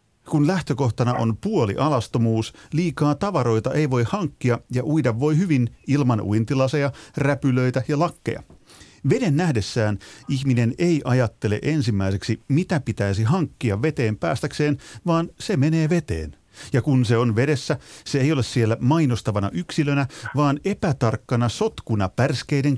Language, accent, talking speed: Finnish, native, 130 wpm